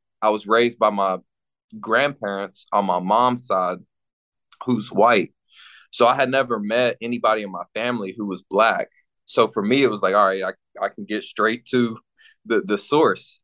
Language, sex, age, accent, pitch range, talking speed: English, male, 30-49, American, 100-125 Hz, 185 wpm